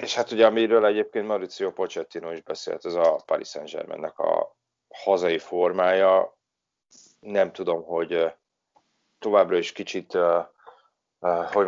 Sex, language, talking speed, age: male, Hungarian, 120 wpm, 30-49